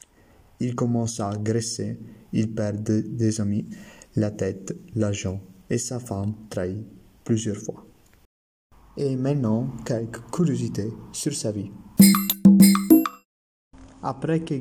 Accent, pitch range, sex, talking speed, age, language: Italian, 115-135 Hz, male, 105 wpm, 30-49, French